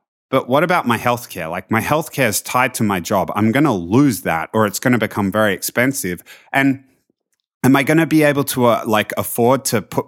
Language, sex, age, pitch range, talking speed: English, male, 30-49, 110-140 Hz, 225 wpm